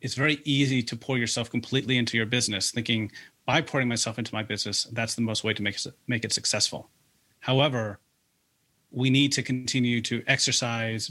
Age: 30-49